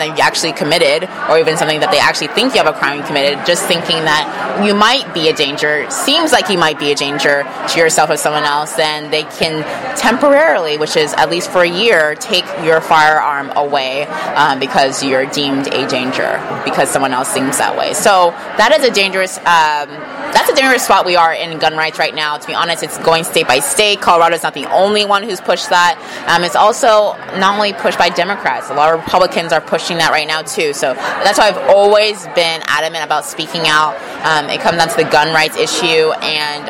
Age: 20-39